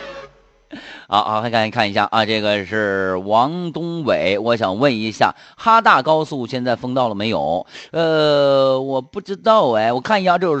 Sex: male